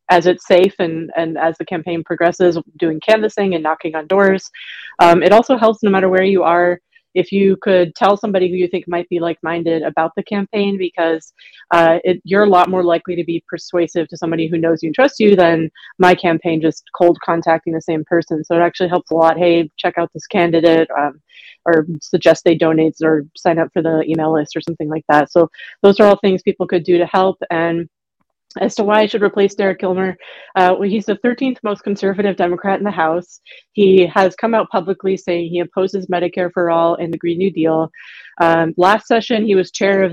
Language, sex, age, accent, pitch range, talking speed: English, female, 30-49, American, 170-195 Hz, 220 wpm